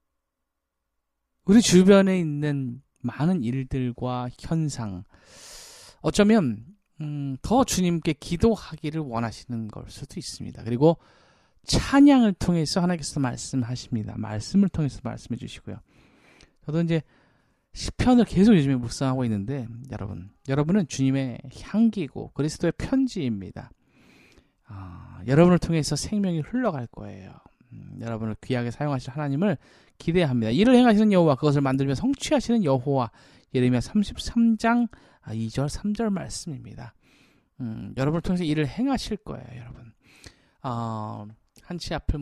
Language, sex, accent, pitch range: Korean, male, native, 120-180 Hz